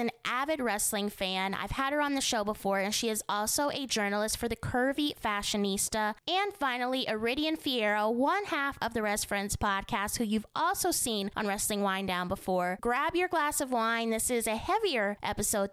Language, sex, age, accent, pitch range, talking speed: English, female, 20-39, American, 195-255 Hz, 195 wpm